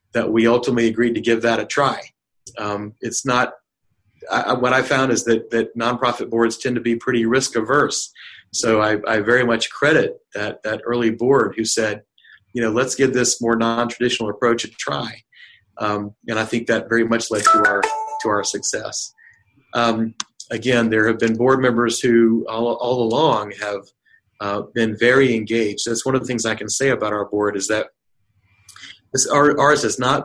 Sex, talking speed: male, 190 wpm